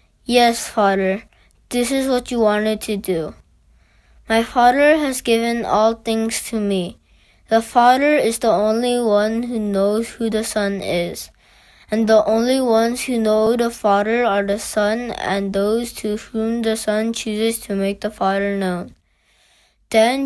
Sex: female